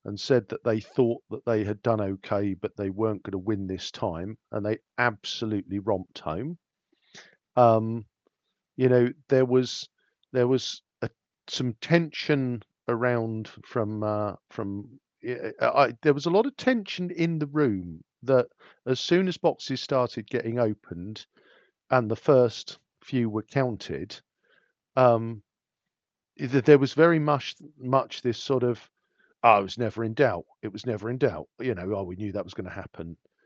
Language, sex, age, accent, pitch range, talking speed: English, male, 50-69, British, 105-130 Hz, 165 wpm